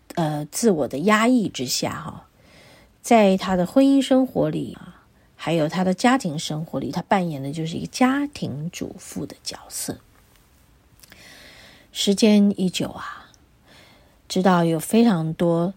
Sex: female